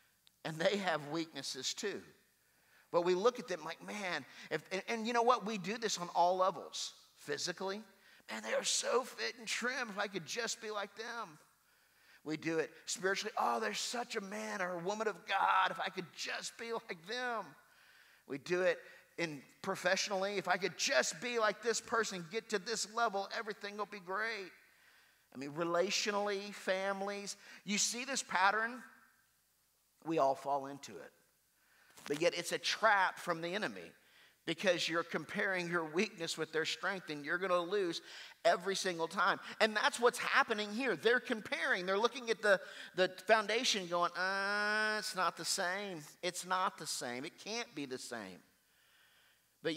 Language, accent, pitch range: English, American, 175-220 Hz